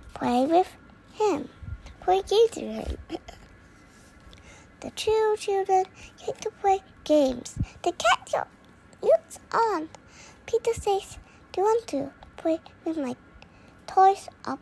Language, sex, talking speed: English, male, 120 wpm